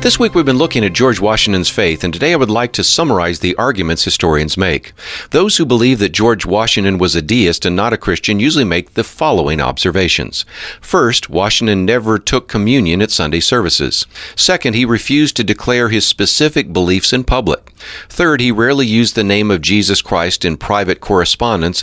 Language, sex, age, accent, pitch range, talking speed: English, male, 50-69, American, 90-120 Hz, 185 wpm